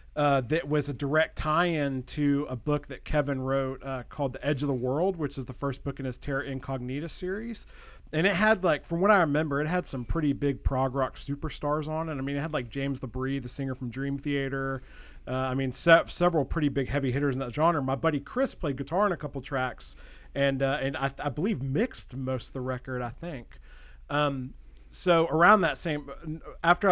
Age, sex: 40-59, male